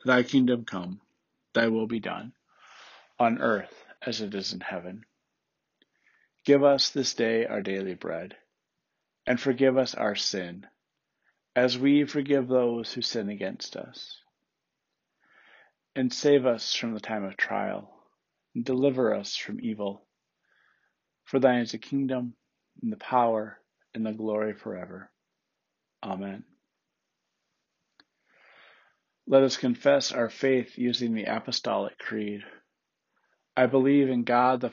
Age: 50-69